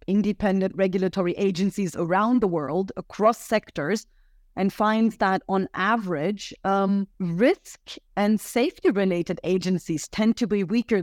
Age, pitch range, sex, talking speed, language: 30-49, 175-200 Hz, female, 125 wpm, English